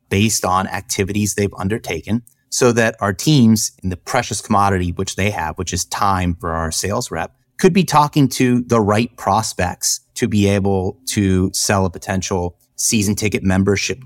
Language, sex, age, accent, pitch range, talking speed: English, male, 30-49, American, 90-110 Hz, 170 wpm